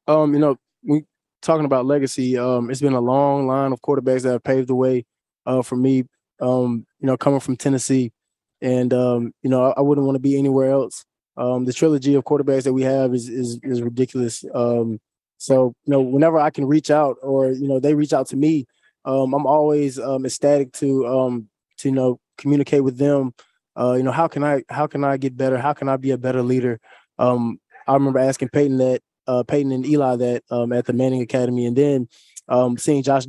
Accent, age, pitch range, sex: American, 20-39, 125-140 Hz, male